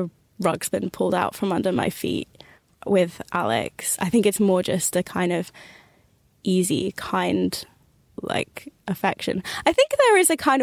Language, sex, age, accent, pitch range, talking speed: English, female, 10-29, British, 190-250 Hz, 160 wpm